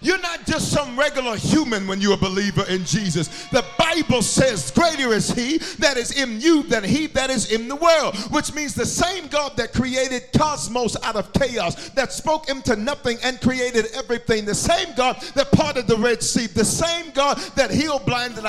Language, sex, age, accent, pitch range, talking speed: English, male, 50-69, American, 190-275 Hz, 200 wpm